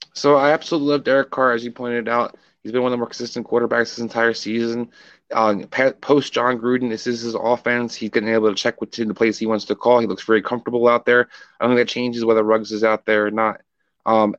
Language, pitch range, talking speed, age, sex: English, 110-125 Hz, 250 wpm, 20-39, male